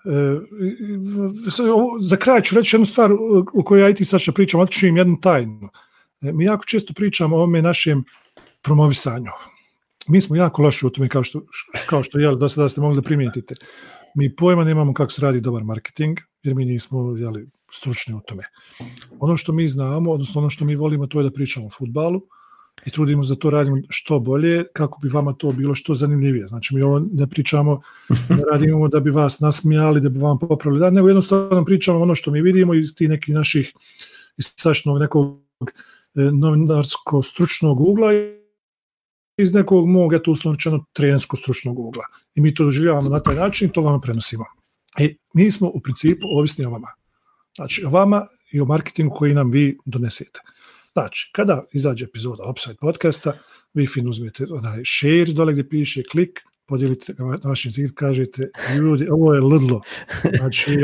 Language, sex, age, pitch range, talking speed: English, male, 40-59, 140-180 Hz, 180 wpm